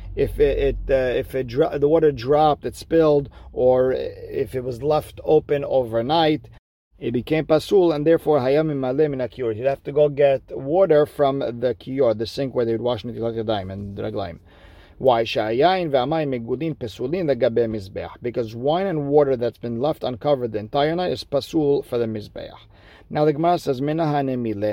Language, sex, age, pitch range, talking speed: English, male, 50-69, 120-150 Hz, 165 wpm